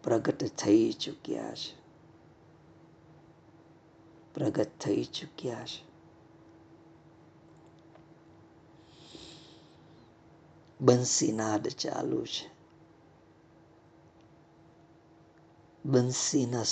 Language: Gujarati